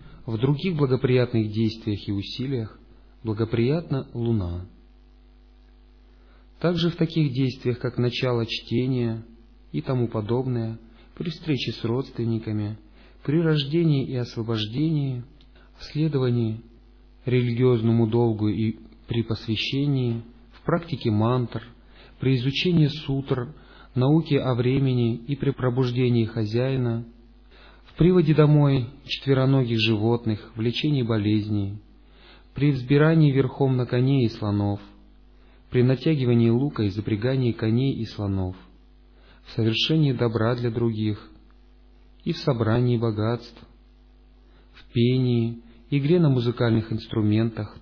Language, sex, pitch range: Russian, male, 115-135 Hz